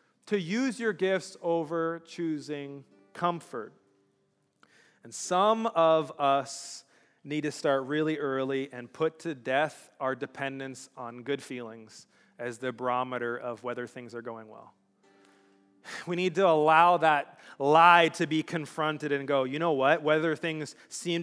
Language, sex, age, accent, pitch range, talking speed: English, male, 30-49, American, 150-205 Hz, 145 wpm